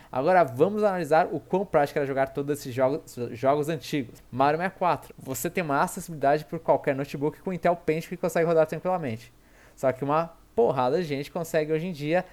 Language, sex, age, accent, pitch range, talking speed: Portuguese, male, 20-39, Brazilian, 135-165 Hz, 190 wpm